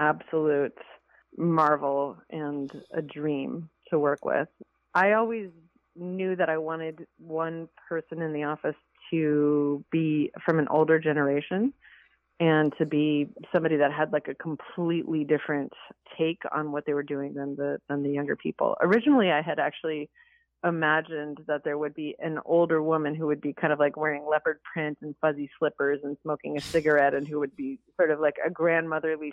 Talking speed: 170 wpm